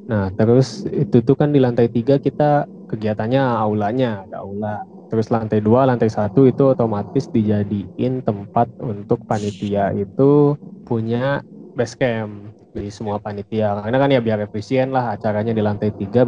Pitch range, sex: 105-130 Hz, male